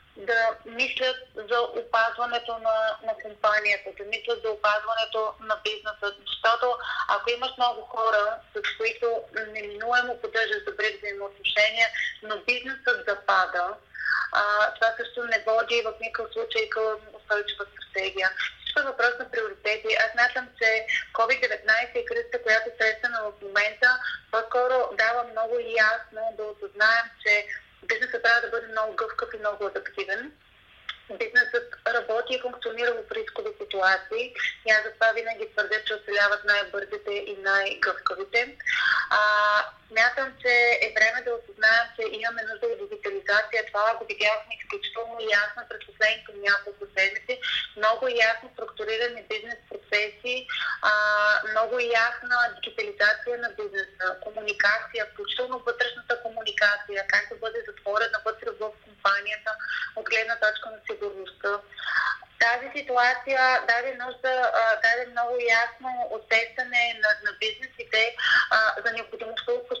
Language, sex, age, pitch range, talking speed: Bulgarian, female, 30-49, 215-250 Hz, 130 wpm